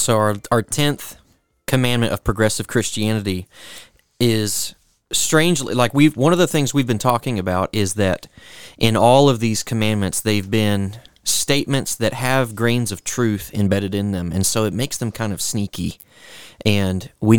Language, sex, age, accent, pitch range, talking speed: English, male, 30-49, American, 95-115 Hz, 165 wpm